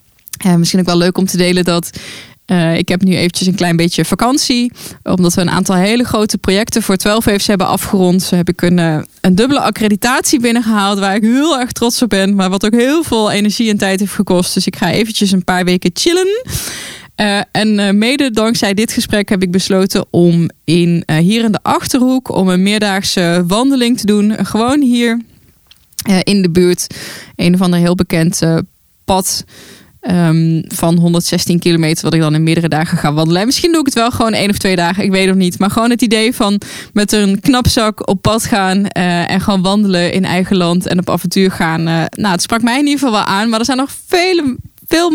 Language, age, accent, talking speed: Dutch, 20-39, Dutch, 215 wpm